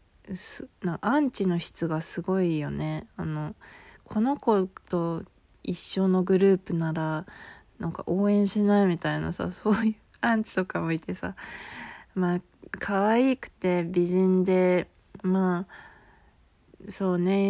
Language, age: Japanese, 20-39